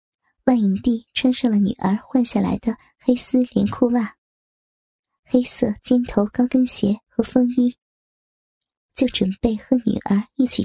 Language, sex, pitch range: Chinese, male, 210-255 Hz